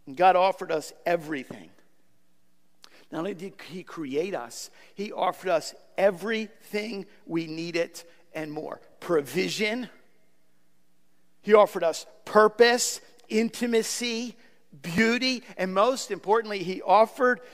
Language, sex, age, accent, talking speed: English, male, 50-69, American, 105 wpm